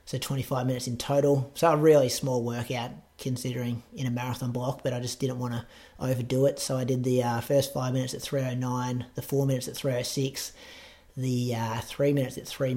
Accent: Australian